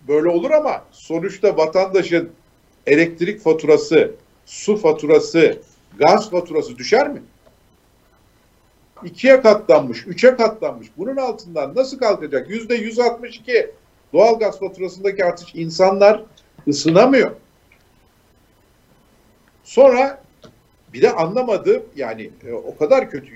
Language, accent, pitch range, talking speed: Turkish, native, 165-240 Hz, 95 wpm